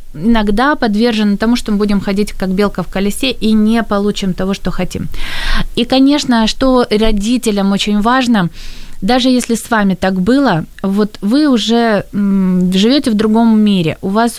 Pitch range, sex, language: 195-230 Hz, female, Ukrainian